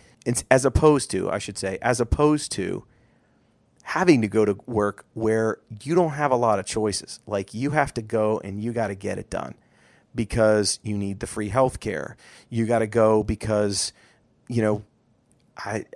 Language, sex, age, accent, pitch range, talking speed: English, male, 30-49, American, 105-120 Hz, 190 wpm